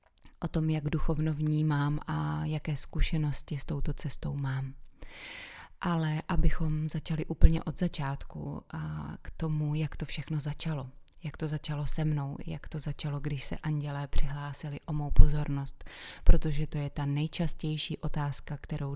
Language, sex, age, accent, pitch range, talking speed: Czech, female, 20-39, native, 140-155 Hz, 150 wpm